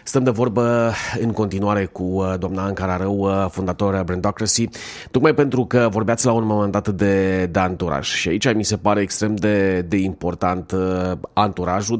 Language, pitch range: Romanian, 95-120 Hz